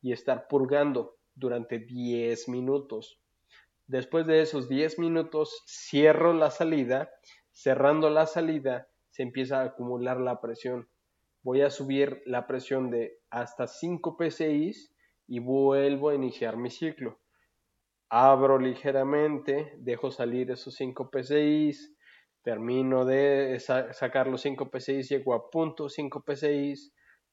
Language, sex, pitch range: Spanish, male, 125-155 Hz